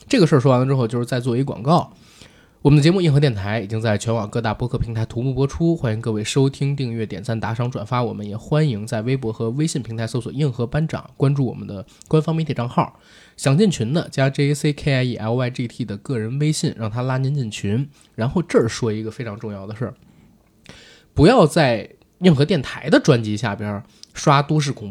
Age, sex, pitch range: 20-39, male, 110-150 Hz